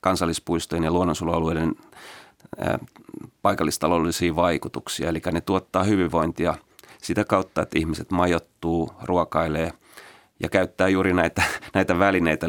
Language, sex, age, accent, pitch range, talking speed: Finnish, male, 30-49, native, 80-95 Hz, 105 wpm